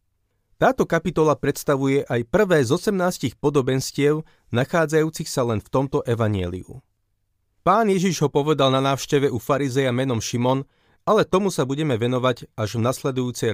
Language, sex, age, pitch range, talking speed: Slovak, male, 30-49, 115-155 Hz, 140 wpm